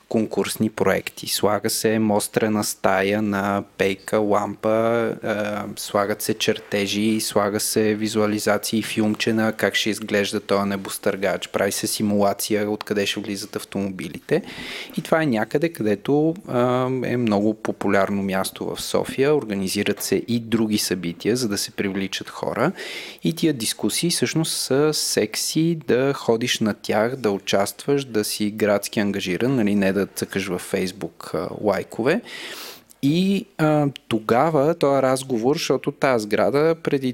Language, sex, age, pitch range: Bulgarian, male, 30-49, 100-135 Hz